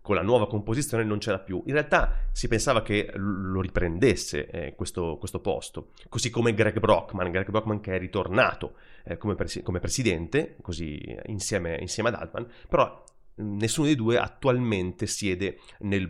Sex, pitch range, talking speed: male, 95-115 Hz, 155 wpm